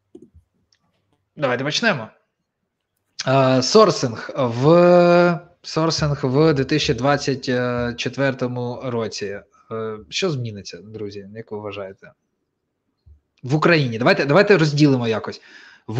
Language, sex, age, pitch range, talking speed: Ukrainian, male, 20-39, 110-145 Hz, 85 wpm